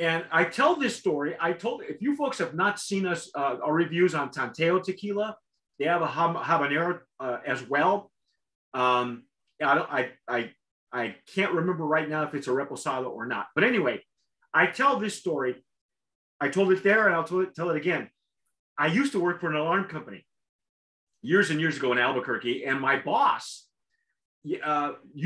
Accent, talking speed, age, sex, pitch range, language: American, 185 wpm, 30-49, male, 145-190 Hz, English